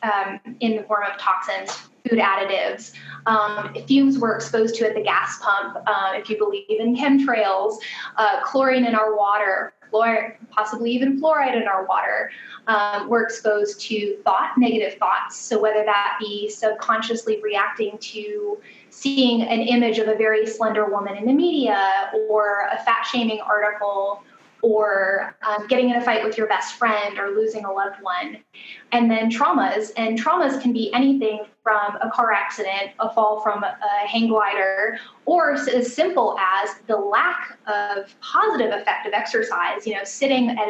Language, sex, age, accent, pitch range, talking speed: English, female, 10-29, American, 205-255 Hz, 160 wpm